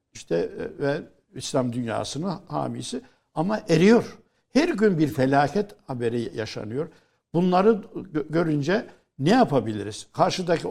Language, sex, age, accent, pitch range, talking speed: Turkish, male, 60-79, native, 125-175 Hz, 105 wpm